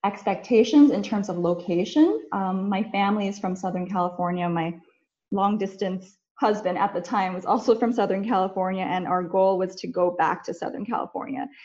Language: English